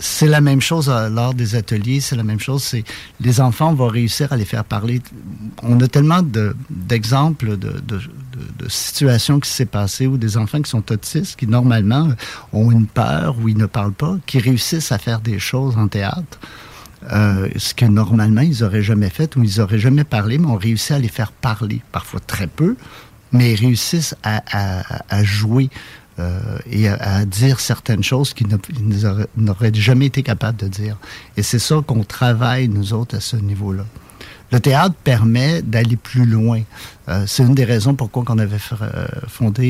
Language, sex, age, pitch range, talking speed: French, male, 50-69, 110-130 Hz, 190 wpm